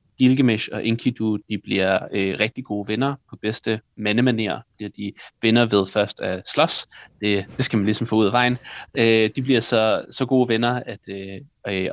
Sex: male